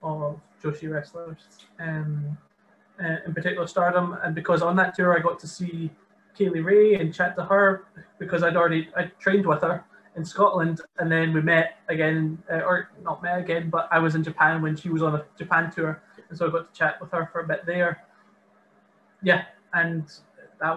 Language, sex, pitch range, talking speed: English, male, 155-175 Hz, 195 wpm